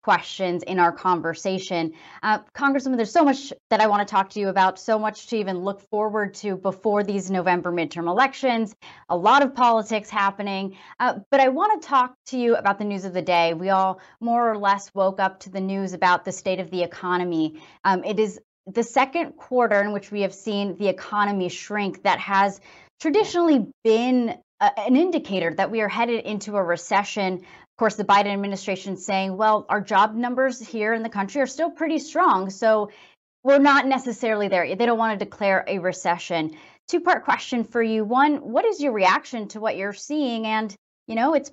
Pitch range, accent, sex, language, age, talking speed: 190-235 Hz, American, female, English, 30-49, 195 wpm